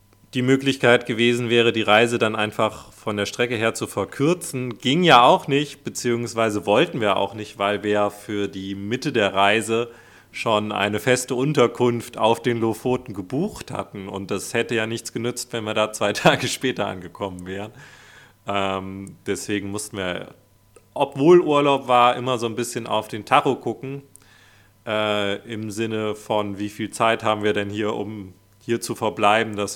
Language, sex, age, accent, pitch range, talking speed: German, male, 40-59, German, 105-130 Hz, 170 wpm